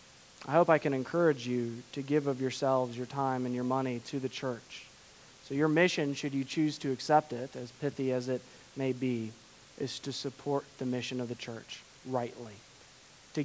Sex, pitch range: male, 125-150 Hz